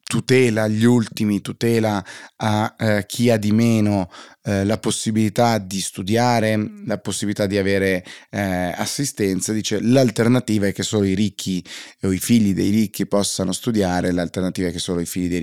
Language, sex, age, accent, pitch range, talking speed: Italian, male, 30-49, native, 95-125 Hz, 165 wpm